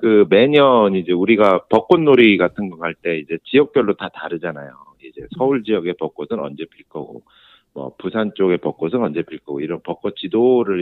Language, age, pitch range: Korean, 50-69, 85-130 Hz